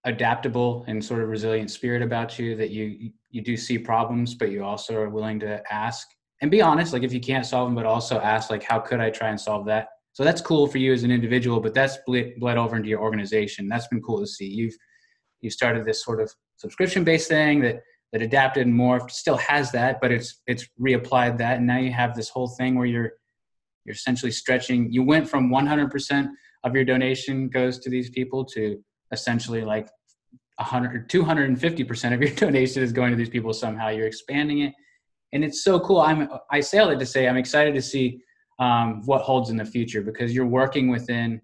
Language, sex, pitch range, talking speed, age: English, male, 115-135 Hz, 210 wpm, 20-39